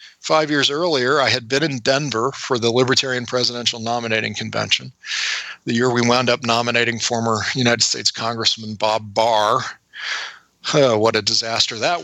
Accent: American